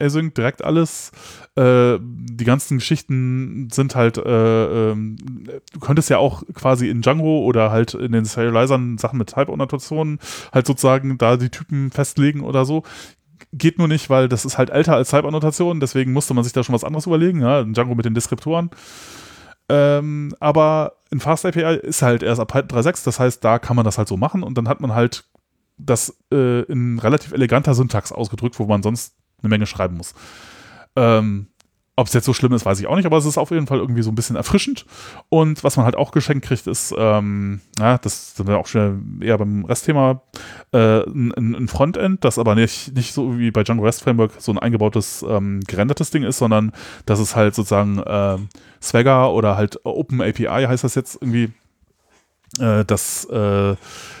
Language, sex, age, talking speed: German, male, 20-39, 195 wpm